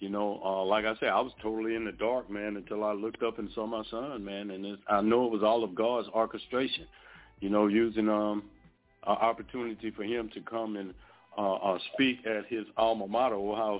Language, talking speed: English, 220 wpm